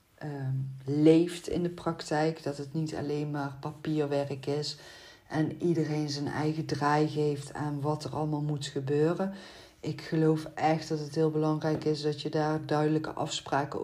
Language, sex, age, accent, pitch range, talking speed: Dutch, female, 40-59, Dutch, 145-160 Hz, 155 wpm